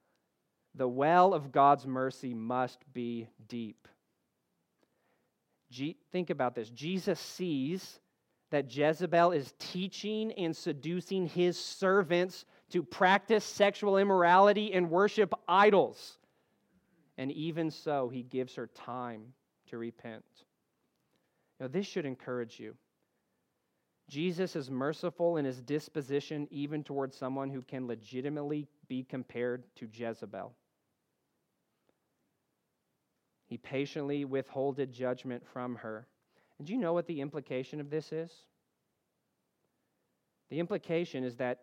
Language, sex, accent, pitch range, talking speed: English, male, American, 130-165 Hz, 110 wpm